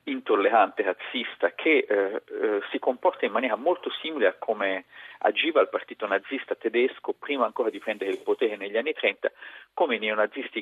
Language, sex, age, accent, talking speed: Italian, male, 40-59, native, 170 wpm